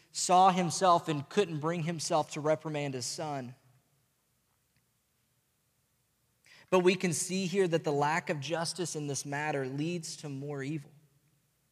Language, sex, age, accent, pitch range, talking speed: English, male, 20-39, American, 130-155 Hz, 140 wpm